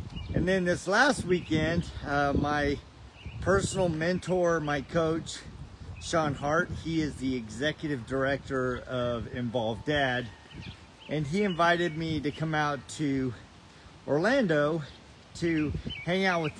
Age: 40-59